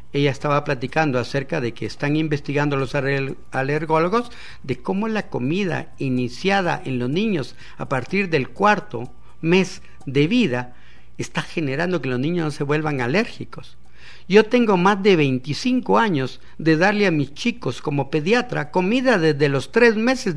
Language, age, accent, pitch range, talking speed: Spanish, 50-69, Mexican, 125-175 Hz, 155 wpm